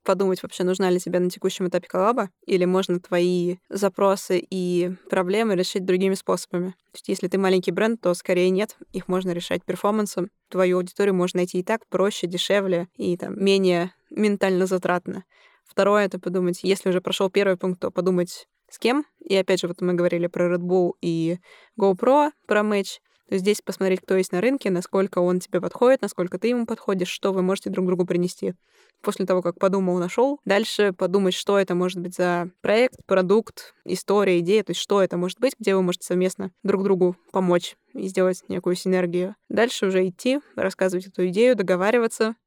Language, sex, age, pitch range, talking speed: Russian, female, 20-39, 185-210 Hz, 185 wpm